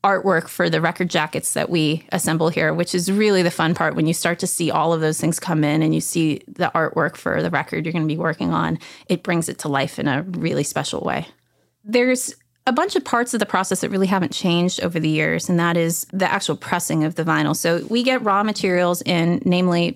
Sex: female